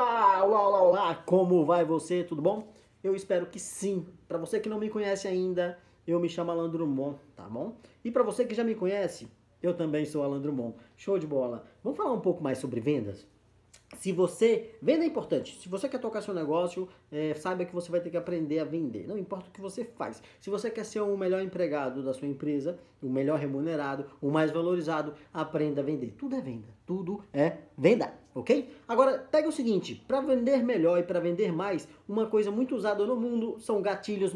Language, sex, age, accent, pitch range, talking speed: Portuguese, male, 20-39, Brazilian, 155-220 Hz, 210 wpm